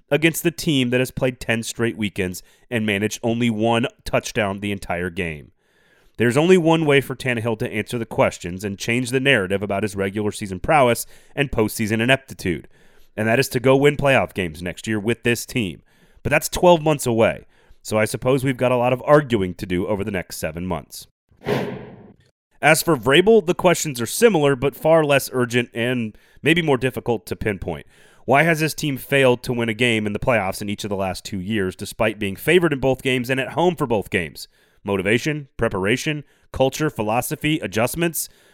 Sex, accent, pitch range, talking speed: male, American, 105-140 Hz, 195 wpm